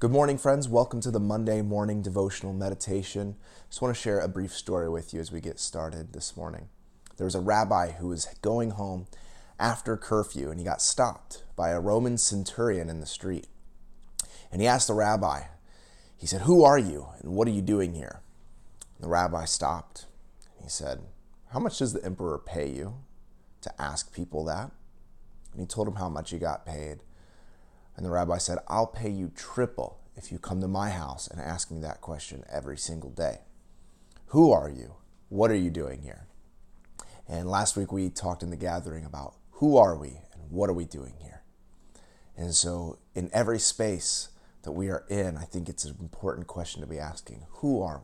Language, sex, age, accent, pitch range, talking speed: English, male, 30-49, American, 80-105 Hz, 195 wpm